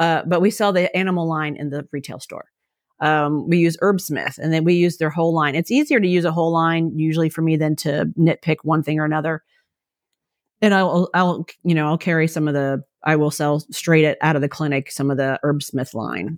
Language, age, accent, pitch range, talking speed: English, 40-59, American, 145-170 Hz, 230 wpm